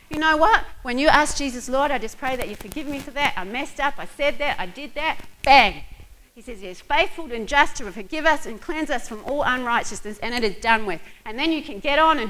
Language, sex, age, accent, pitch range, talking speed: English, female, 40-59, Australian, 210-285 Hz, 270 wpm